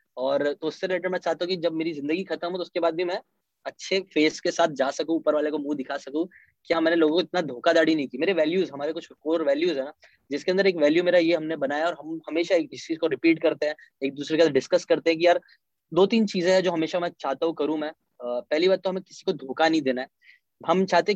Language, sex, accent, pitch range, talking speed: Hindi, male, native, 150-180 Hz, 140 wpm